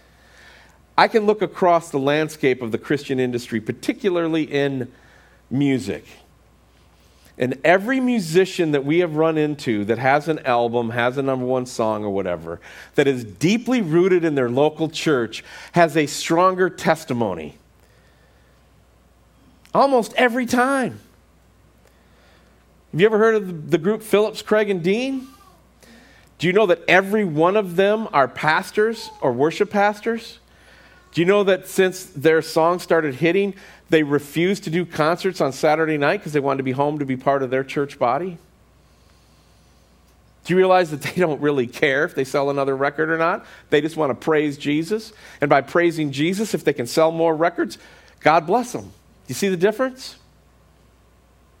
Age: 40-59